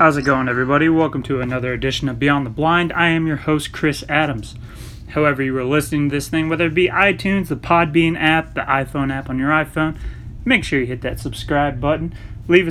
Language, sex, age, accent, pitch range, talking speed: English, male, 30-49, American, 135-165 Hz, 215 wpm